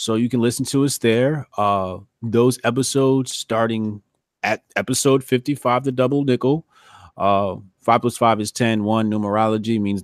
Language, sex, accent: English, male, American